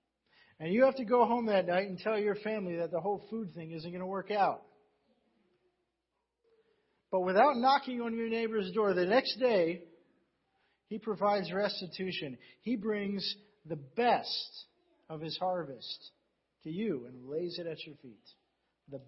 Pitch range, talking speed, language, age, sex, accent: 185-265 Hz, 160 wpm, English, 50-69, male, American